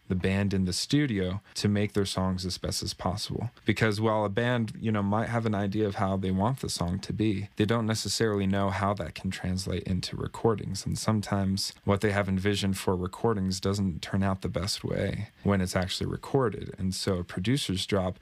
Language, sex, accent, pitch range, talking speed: English, male, American, 95-110 Hz, 210 wpm